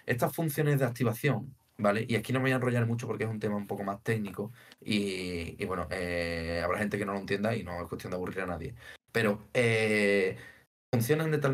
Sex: male